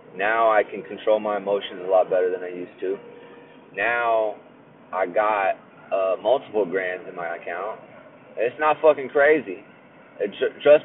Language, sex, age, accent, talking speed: English, male, 20-39, American, 150 wpm